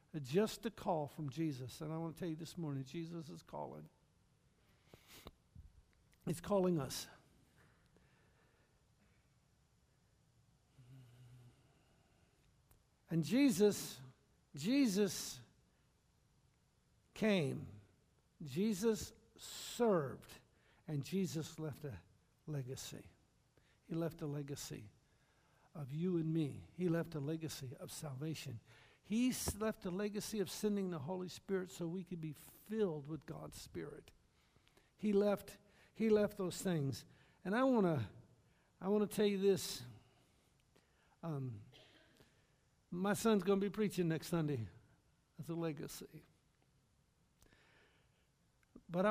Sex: male